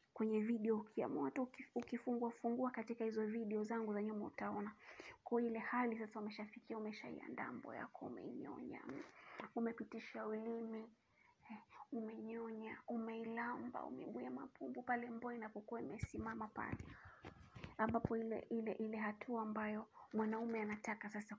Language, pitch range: Swahili, 215-240 Hz